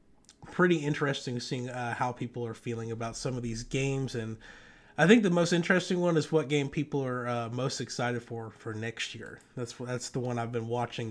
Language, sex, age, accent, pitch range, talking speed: English, male, 30-49, American, 120-155 Hz, 210 wpm